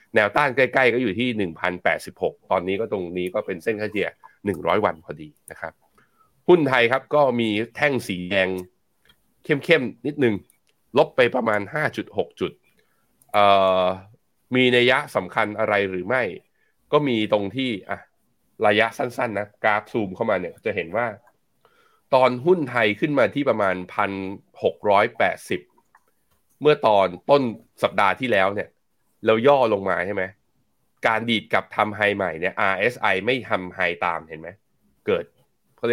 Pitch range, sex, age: 95-125 Hz, male, 20-39